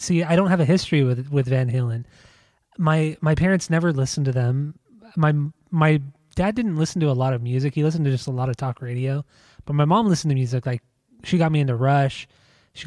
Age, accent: 20-39, American